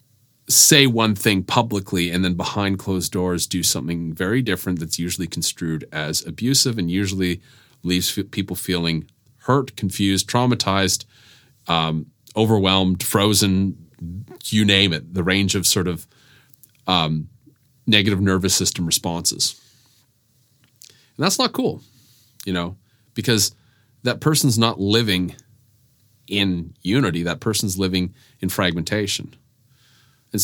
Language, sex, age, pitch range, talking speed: English, male, 30-49, 95-125 Hz, 120 wpm